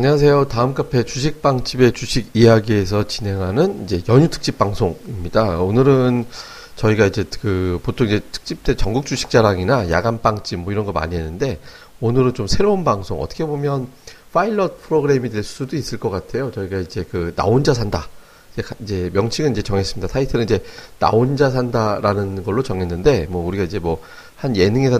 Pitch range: 95-130 Hz